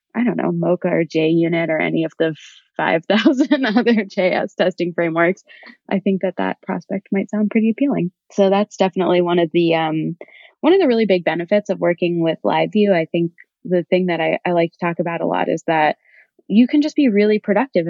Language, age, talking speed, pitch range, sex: English, 20-39, 210 wpm, 165-195 Hz, female